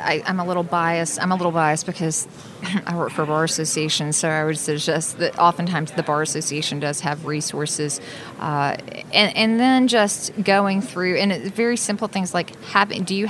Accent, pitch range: American, 160-190 Hz